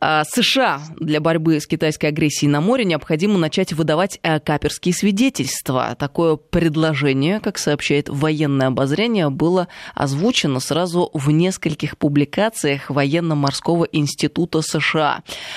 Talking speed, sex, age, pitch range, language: 110 wpm, female, 20-39, 145-175 Hz, Russian